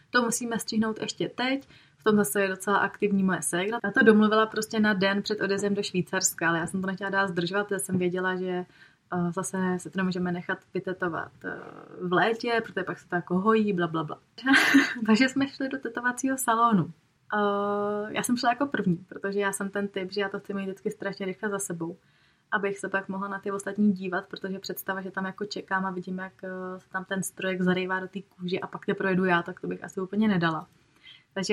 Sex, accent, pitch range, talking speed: female, native, 185-210 Hz, 215 wpm